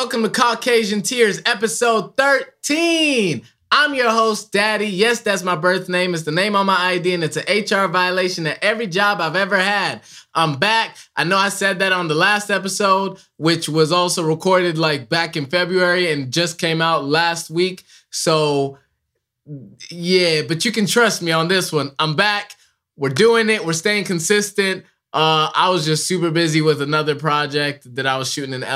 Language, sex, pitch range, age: English, male, 135-185 Hz, 20-39